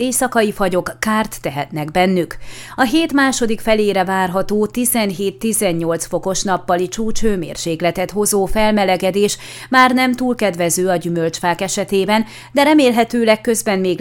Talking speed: 115 wpm